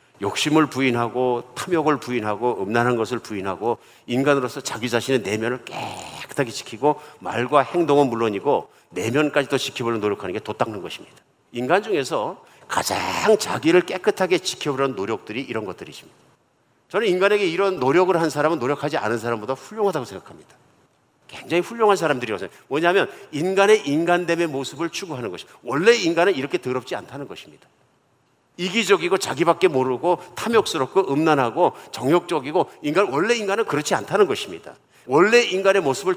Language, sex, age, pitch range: Korean, male, 50-69, 130-185 Hz